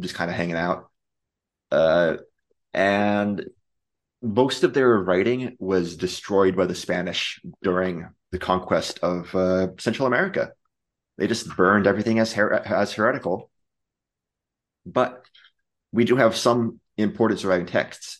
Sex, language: male, English